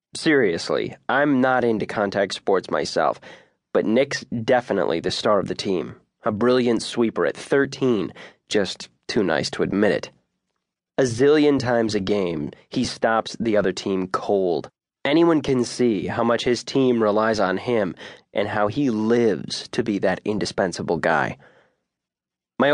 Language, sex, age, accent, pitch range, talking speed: English, male, 20-39, American, 100-125 Hz, 150 wpm